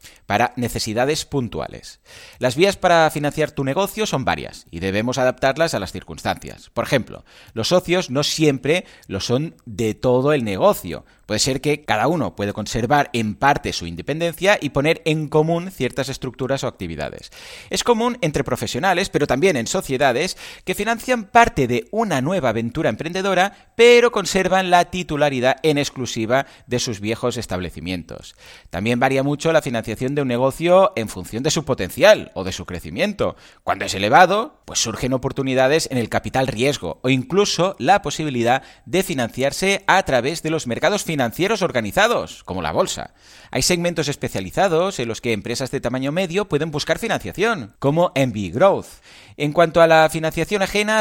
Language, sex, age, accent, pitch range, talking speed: Spanish, male, 30-49, Spanish, 115-175 Hz, 165 wpm